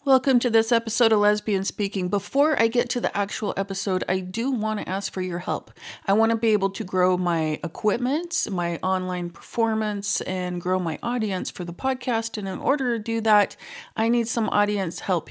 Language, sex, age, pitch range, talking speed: English, female, 40-59, 185-230 Hz, 205 wpm